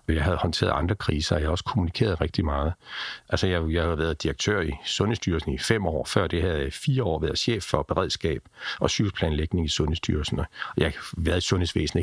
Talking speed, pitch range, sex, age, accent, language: 200 wpm, 80-105 Hz, male, 60-79, native, Danish